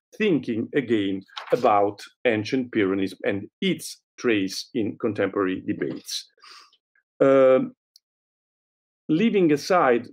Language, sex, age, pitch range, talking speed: Portuguese, male, 50-69, 115-170 Hz, 85 wpm